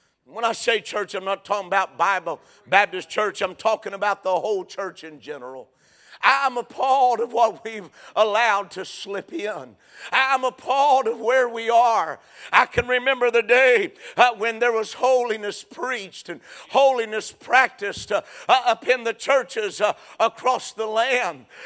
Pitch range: 225-295 Hz